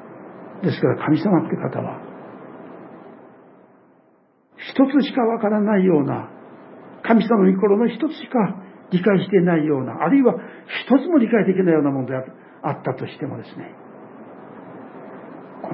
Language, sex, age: Japanese, male, 60-79